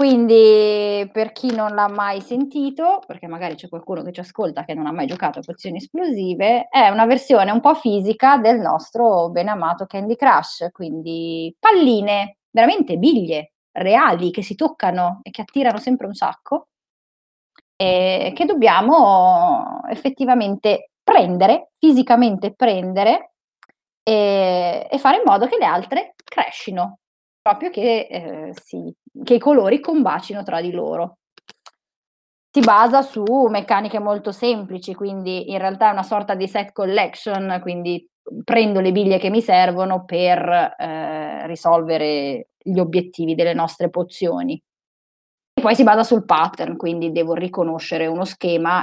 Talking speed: 145 wpm